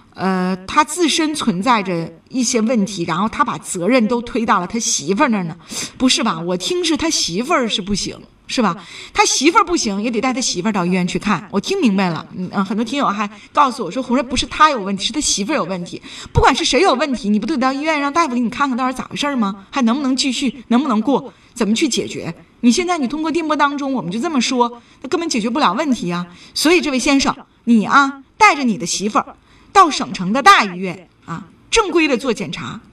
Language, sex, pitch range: Chinese, female, 195-285 Hz